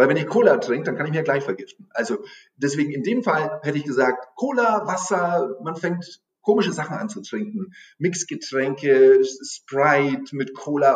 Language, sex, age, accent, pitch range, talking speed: German, male, 40-59, German, 130-210 Hz, 180 wpm